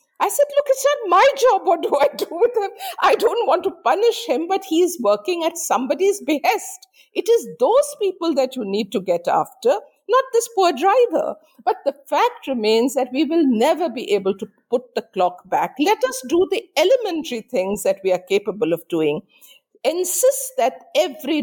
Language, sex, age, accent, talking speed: English, female, 50-69, Indian, 195 wpm